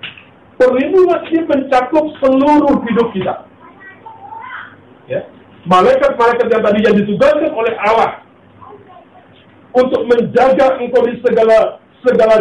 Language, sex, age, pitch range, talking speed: Indonesian, male, 50-69, 180-265 Hz, 95 wpm